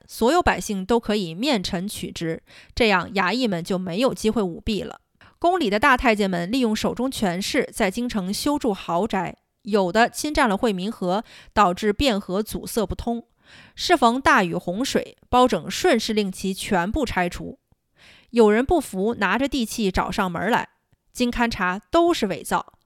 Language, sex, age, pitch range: Chinese, female, 20-39, 195-255 Hz